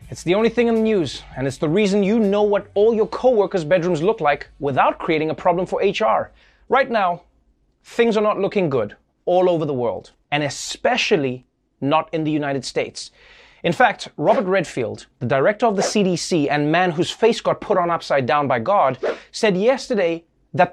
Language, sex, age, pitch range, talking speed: English, male, 30-49, 155-215 Hz, 195 wpm